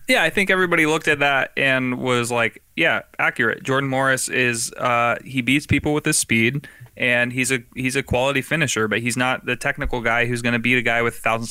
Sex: male